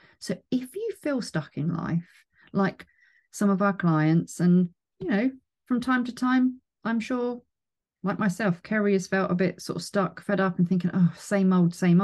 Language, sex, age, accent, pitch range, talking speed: English, female, 40-59, British, 180-245 Hz, 195 wpm